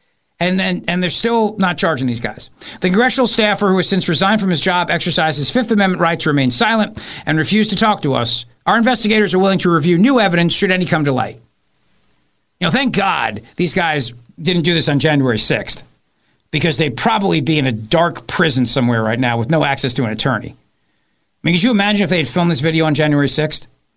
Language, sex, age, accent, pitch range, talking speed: English, male, 50-69, American, 135-190 Hz, 225 wpm